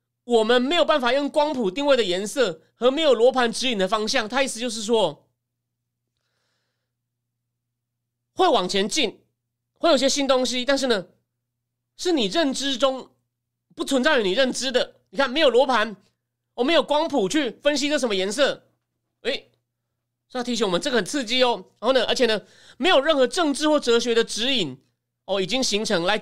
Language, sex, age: Chinese, male, 30-49